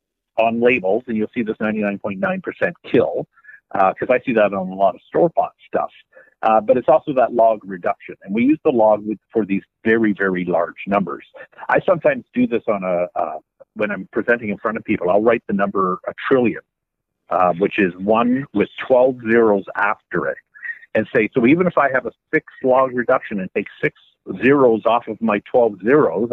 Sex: male